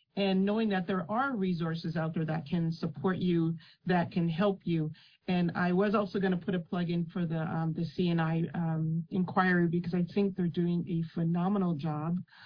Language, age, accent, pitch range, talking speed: English, 40-59, American, 170-195 Hz, 185 wpm